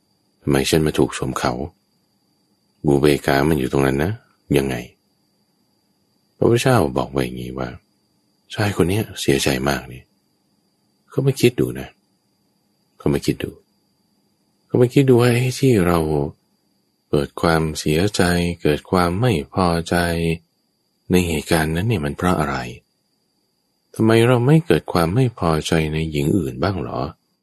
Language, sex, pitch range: English, male, 75-105 Hz